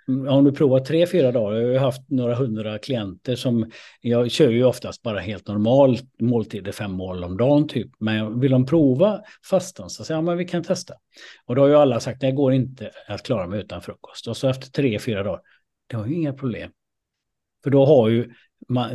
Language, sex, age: Swedish, male, 60-79